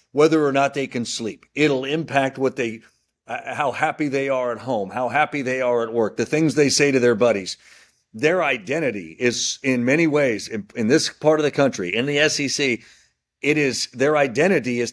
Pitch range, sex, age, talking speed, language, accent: 125-160 Hz, male, 40-59, 205 wpm, English, American